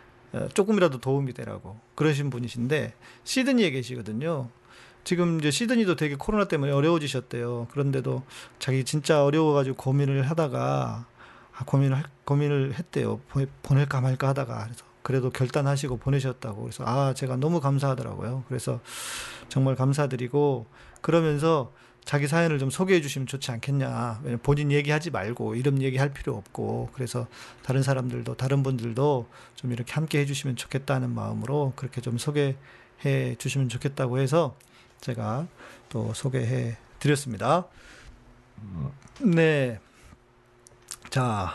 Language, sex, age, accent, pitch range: Korean, male, 40-59, native, 125-150 Hz